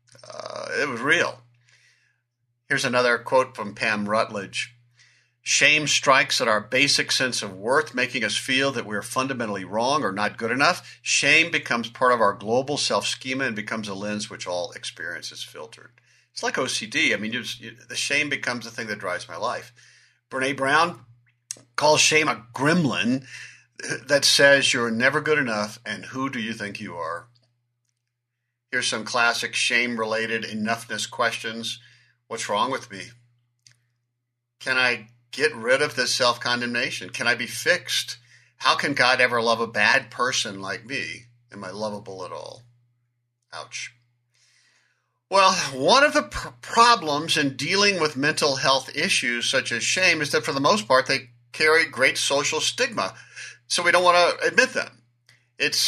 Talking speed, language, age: 160 wpm, English, 50-69